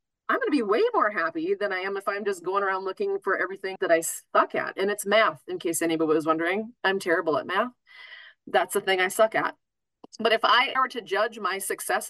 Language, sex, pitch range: English, female, 160-255 Hz